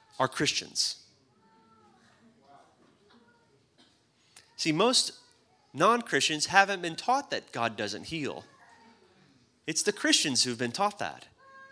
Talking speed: 95 wpm